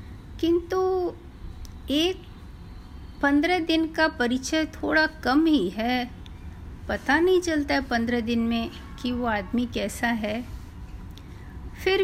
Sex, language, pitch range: female, Hindi, 220-315 Hz